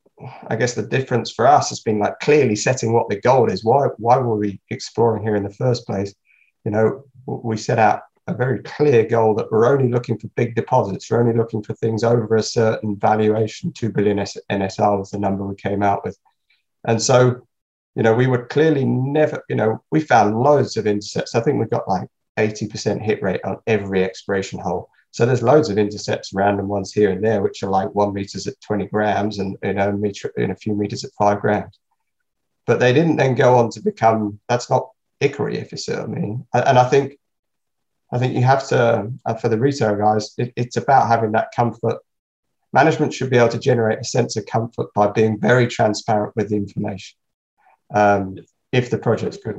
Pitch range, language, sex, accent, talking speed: 105-125 Hz, English, male, British, 210 wpm